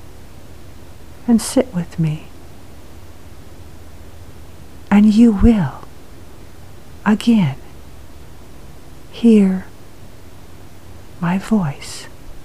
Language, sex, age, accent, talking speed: English, female, 60-79, American, 55 wpm